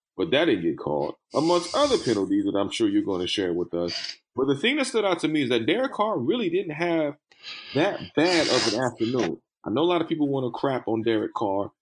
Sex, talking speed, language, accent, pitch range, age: male, 250 wpm, English, American, 110-155 Hz, 30-49